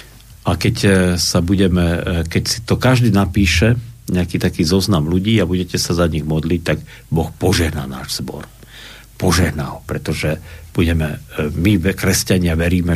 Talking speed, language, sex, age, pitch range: 145 wpm, Slovak, male, 50-69, 85-105 Hz